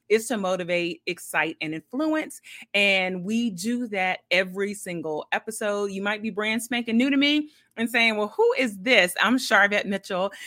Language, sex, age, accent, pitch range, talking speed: English, female, 30-49, American, 180-225 Hz, 170 wpm